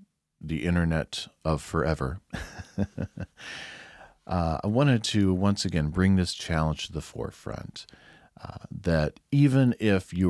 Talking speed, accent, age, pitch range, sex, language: 120 wpm, American, 40-59, 75-95 Hz, male, English